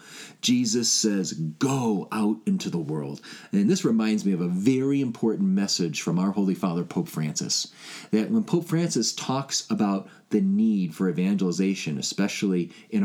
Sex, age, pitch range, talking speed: male, 40-59, 110-180 Hz, 155 wpm